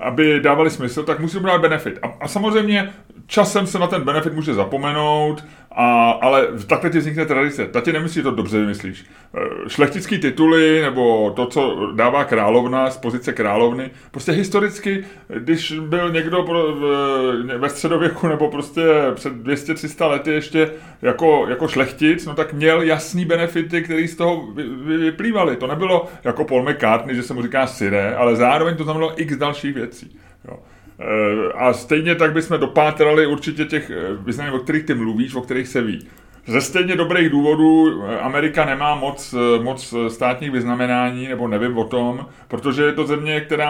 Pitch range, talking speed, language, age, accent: 125-160 Hz, 165 wpm, Czech, 30-49, native